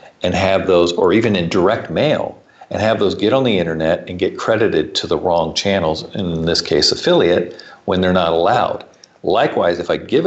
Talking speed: 200 wpm